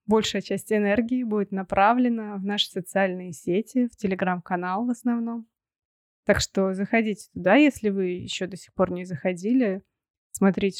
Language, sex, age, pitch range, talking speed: Russian, female, 20-39, 190-225 Hz, 145 wpm